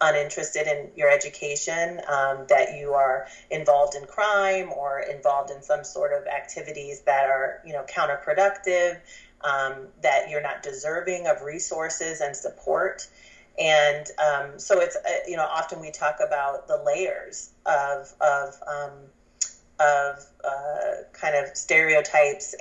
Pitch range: 140-190 Hz